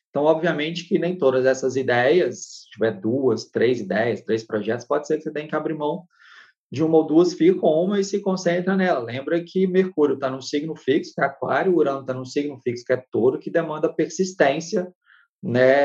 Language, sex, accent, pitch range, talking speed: Portuguese, male, Brazilian, 120-170 Hz, 210 wpm